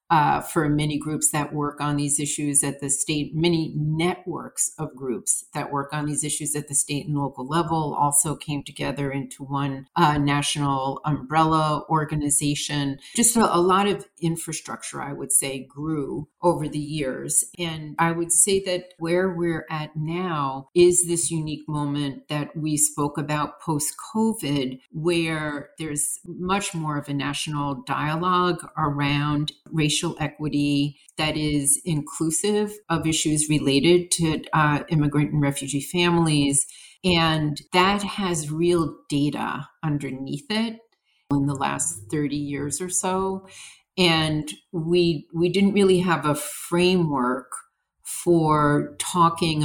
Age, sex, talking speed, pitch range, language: 40-59, female, 135 wpm, 145-170 Hz, English